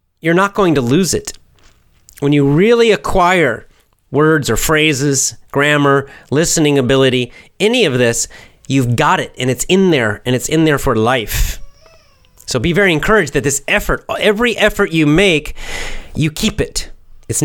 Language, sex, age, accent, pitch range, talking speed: English, male, 30-49, American, 100-155 Hz, 160 wpm